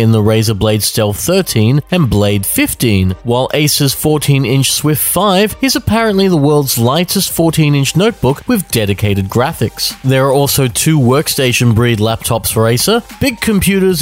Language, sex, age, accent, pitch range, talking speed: English, male, 30-49, Australian, 115-160 Hz, 145 wpm